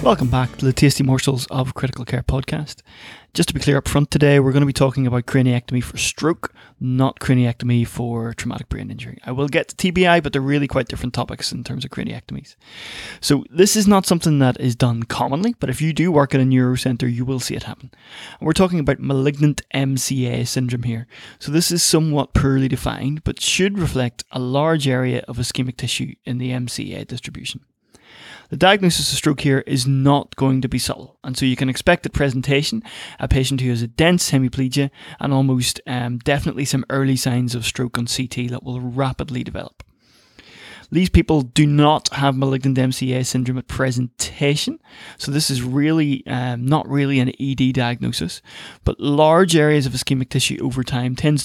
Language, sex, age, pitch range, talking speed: English, male, 20-39, 125-145 Hz, 190 wpm